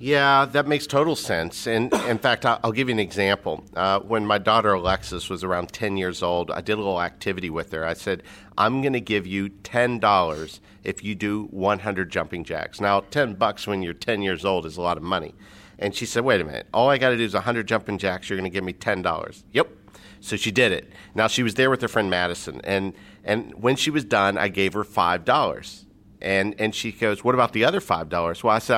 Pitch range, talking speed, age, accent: 95-120 Hz, 235 wpm, 50-69, American